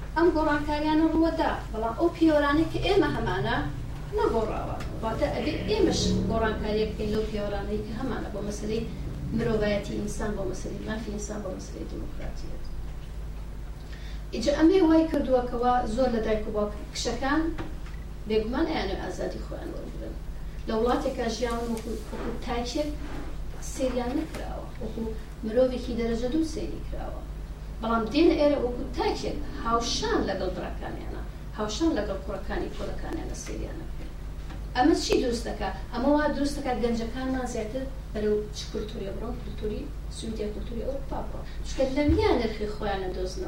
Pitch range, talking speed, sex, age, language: 225-295 Hz, 45 wpm, female, 40-59, English